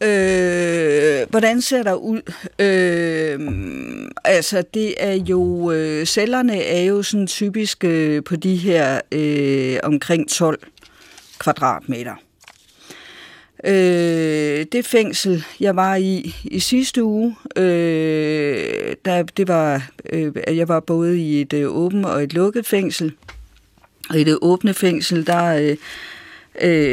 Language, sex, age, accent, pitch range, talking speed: Danish, female, 50-69, native, 150-200 Hz, 120 wpm